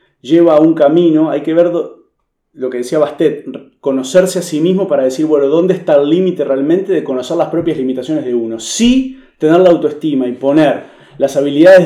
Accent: Argentinian